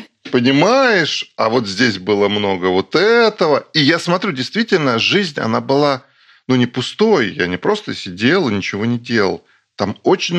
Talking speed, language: 160 wpm, Russian